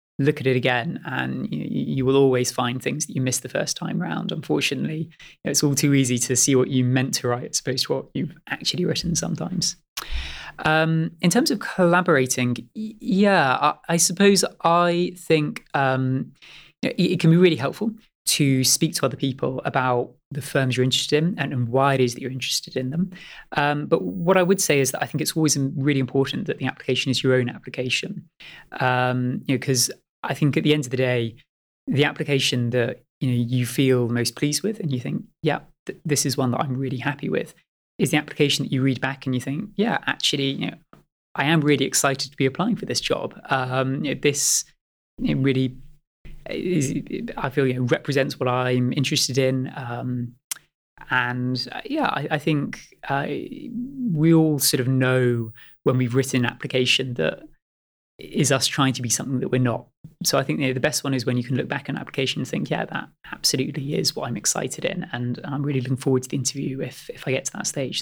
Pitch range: 130-160 Hz